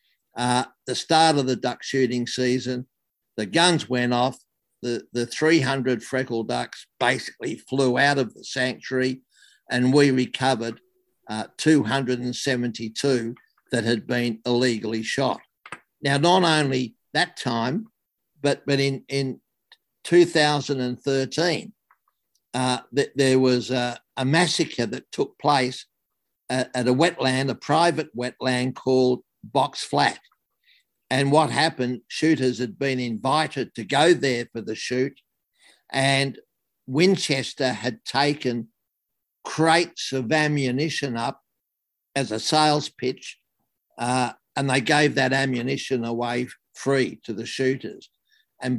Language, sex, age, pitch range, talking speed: English, male, 60-79, 125-145 Hz, 125 wpm